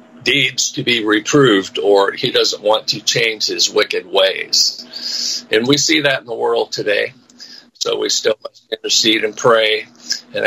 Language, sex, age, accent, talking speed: English, male, 50-69, American, 160 wpm